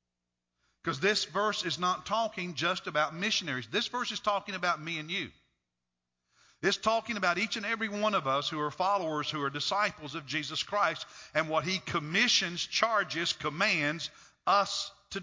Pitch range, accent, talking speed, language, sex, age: 145-210 Hz, American, 170 wpm, English, male, 50-69